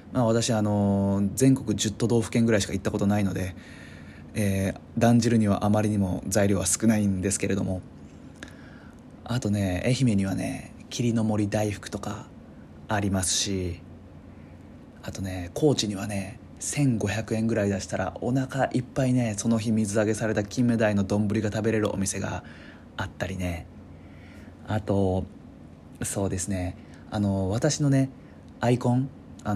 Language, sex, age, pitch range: Japanese, male, 20-39, 95-115 Hz